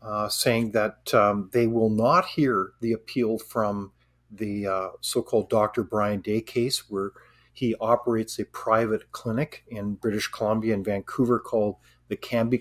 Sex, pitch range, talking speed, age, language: male, 110-130 Hz, 150 wpm, 50-69, English